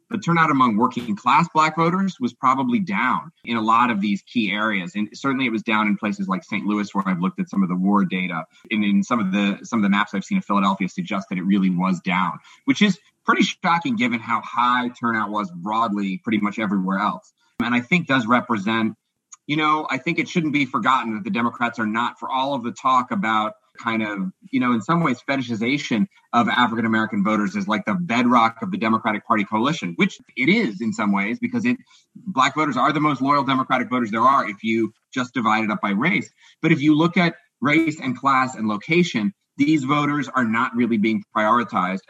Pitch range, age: 110-170 Hz, 30-49